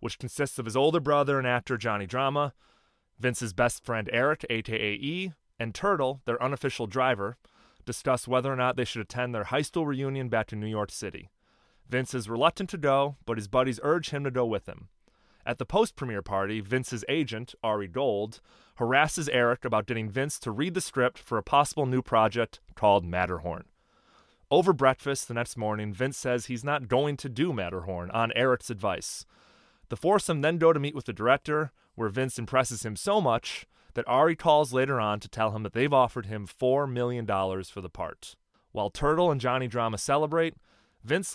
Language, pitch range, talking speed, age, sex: English, 110-140 Hz, 185 wpm, 30-49, male